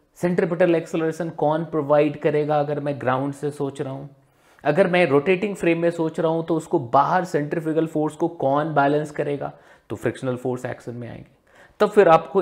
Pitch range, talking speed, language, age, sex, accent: 130-175 Hz, 175 wpm, Hindi, 30-49, male, native